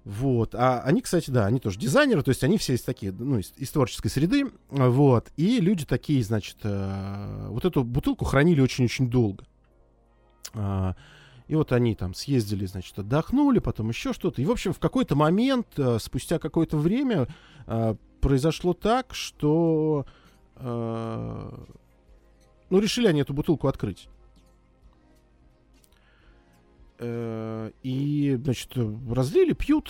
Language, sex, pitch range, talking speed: Russian, male, 115-175 Hz, 135 wpm